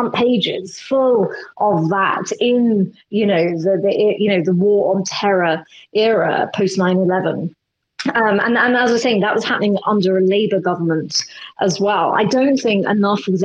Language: English